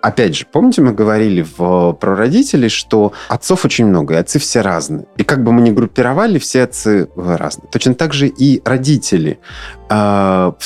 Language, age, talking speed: Russian, 30-49, 175 wpm